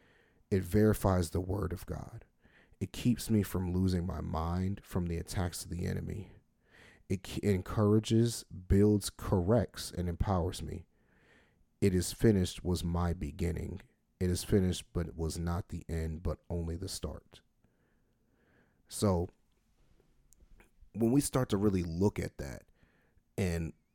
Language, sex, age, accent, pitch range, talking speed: English, male, 40-59, American, 85-105 Hz, 140 wpm